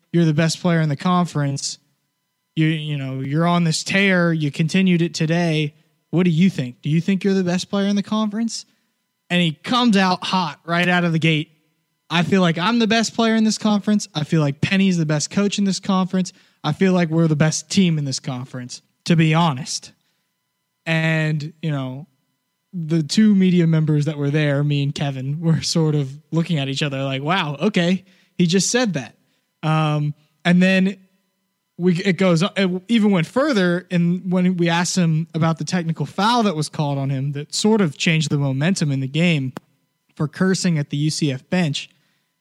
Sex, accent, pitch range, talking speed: male, American, 155-190 Hz, 200 wpm